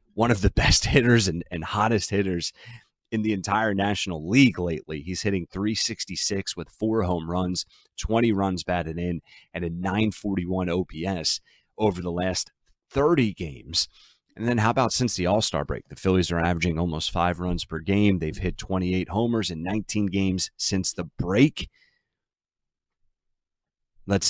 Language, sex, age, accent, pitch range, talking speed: English, male, 30-49, American, 85-100 Hz, 155 wpm